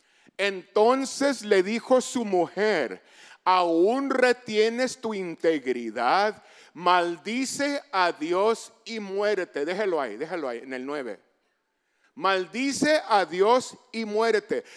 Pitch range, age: 210-320 Hz, 50-69